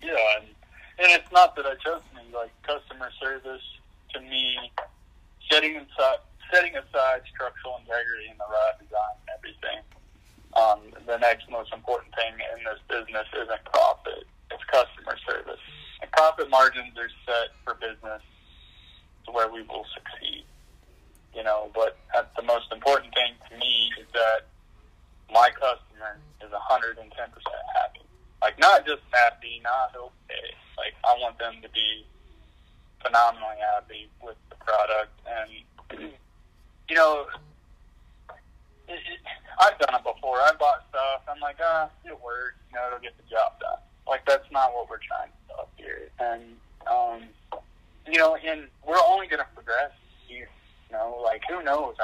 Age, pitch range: 30-49, 110-155 Hz